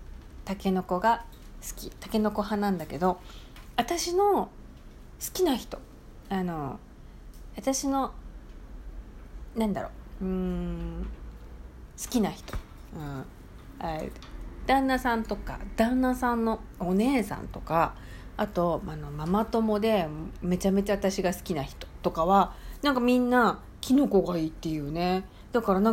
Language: Japanese